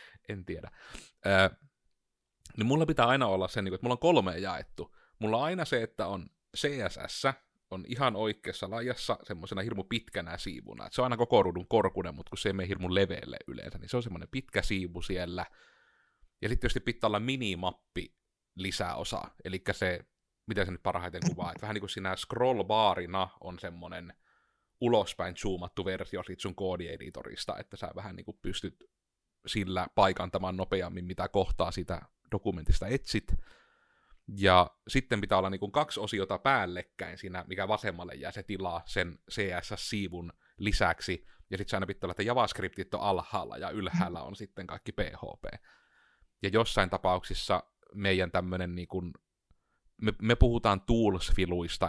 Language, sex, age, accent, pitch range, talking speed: Finnish, male, 30-49, native, 90-110 Hz, 160 wpm